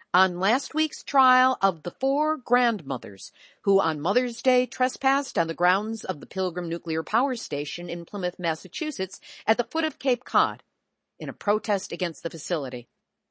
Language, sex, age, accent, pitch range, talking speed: English, female, 50-69, American, 175-250 Hz, 165 wpm